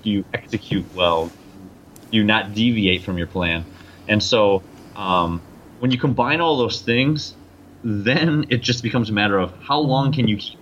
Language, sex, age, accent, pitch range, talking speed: English, male, 30-49, American, 95-120 Hz, 170 wpm